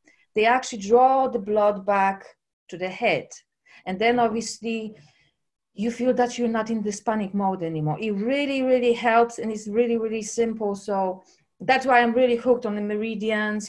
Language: English